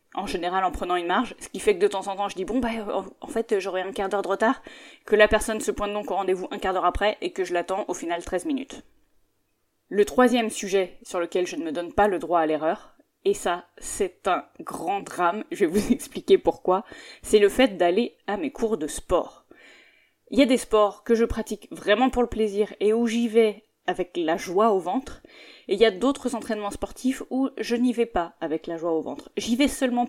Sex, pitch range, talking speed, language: female, 185-240 Hz, 240 wpm, French